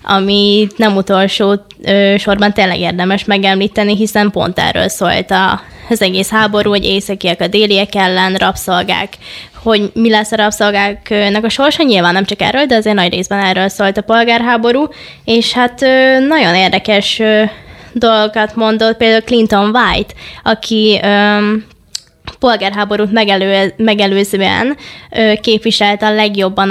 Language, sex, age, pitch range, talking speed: Hungarian, female, 20-39, 200-225 Hz, 120 wpm